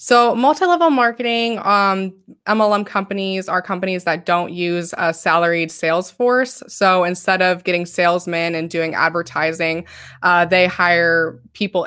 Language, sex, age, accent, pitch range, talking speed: English, female, 20-39, American, 165-195 Hz, 140 wpm